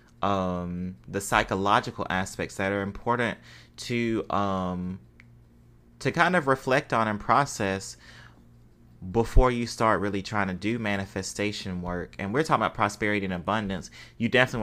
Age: 30-49